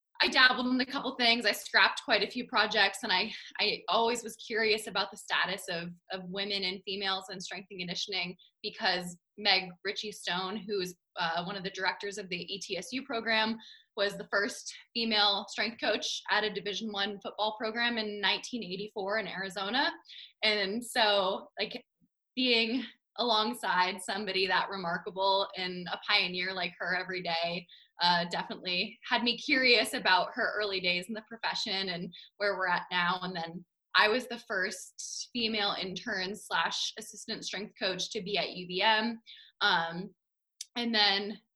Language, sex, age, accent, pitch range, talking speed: English, female, 20-39, American, 185-225 Hz, 165 wpm